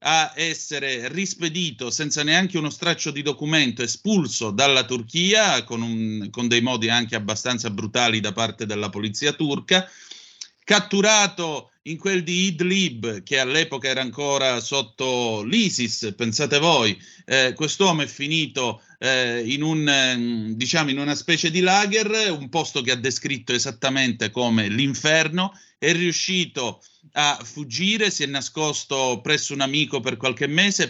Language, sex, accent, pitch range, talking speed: Italian, male, native, 120-165 Hz, 135 wpm